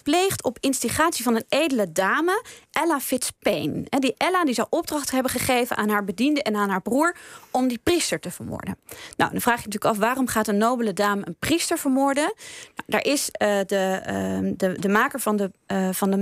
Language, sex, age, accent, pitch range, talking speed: Dutch, female, 20-39, Dutch, 210-290 Hz, 210 wpm